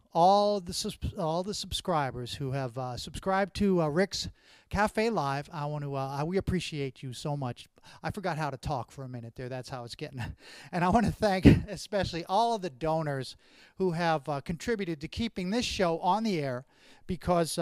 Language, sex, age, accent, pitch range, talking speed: English, male, 40-59, American, 140-190 Hz, 200 wpm